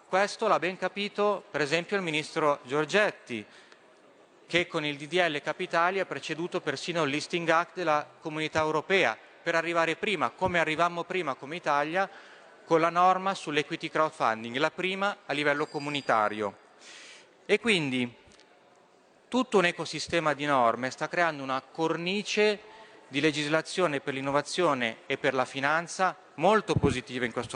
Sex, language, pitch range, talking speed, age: male, Italian, 145-185 Hz, 140 wpm, 40-59